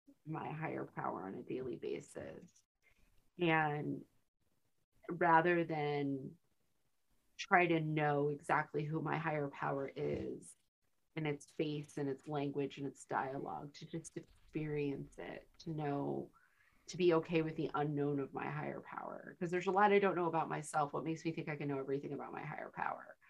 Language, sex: English, female